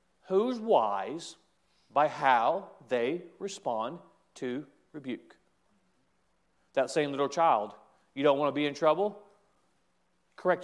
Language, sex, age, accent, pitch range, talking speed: English, male, 40-59, American, 170-220 Hz, 115 wpm